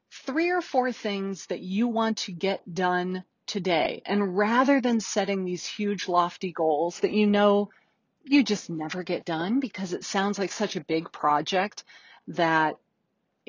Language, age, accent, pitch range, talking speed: English, 40-59, American, 170-215 Hz, 160 wpm